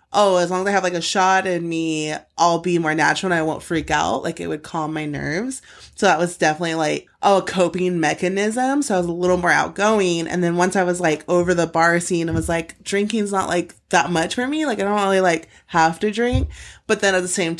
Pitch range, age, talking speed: 160-185 Hz, 20-39, 250 wpm